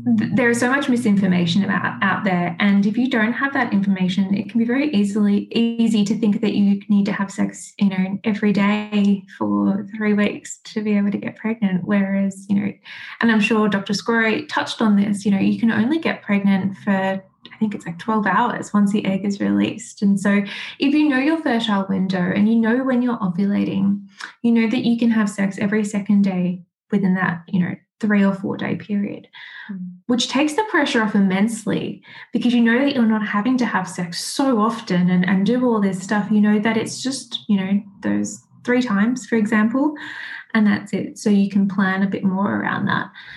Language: English